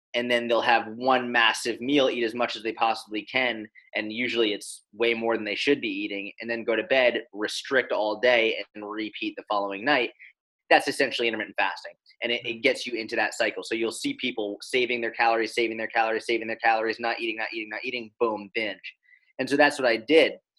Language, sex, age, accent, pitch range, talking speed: English, male, 30-49, American, 110-130 Hz, 220 wpm